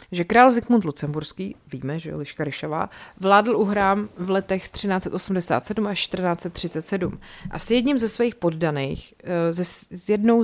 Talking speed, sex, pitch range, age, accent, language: 130 wpm, female, 165-205 Hz, 30-49, native, Czech